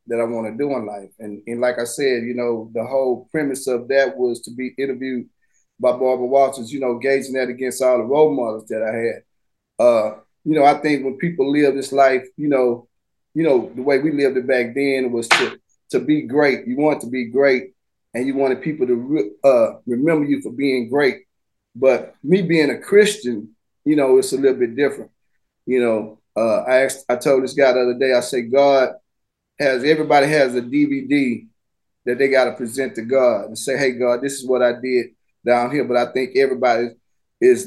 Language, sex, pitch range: English, male, 125-150 Hz